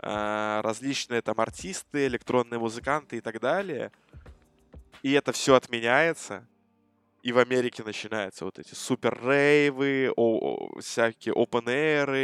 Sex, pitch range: male, 110-135 Hz